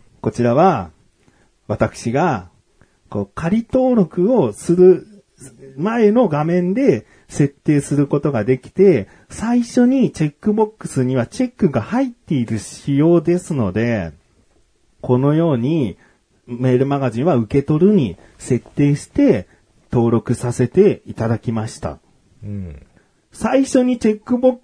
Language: Japanese